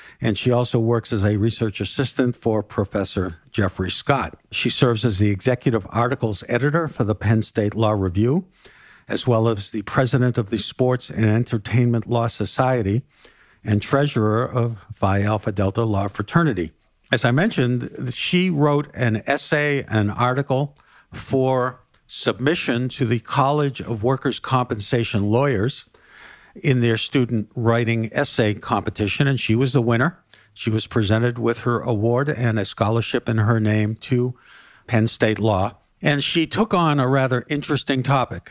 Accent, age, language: American, 50-69, English